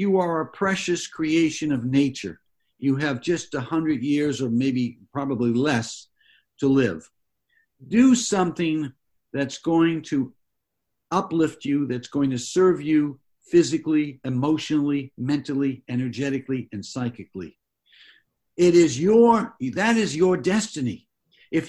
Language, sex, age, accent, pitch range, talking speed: English, male, 60-79, American, 125-165 Hz, 125 wpm